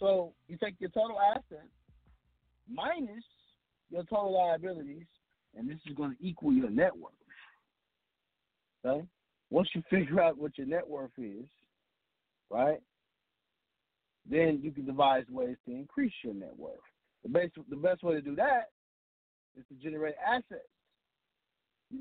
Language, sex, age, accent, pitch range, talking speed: English, male, 50-69, American, 130-215 Hz, 145 wpm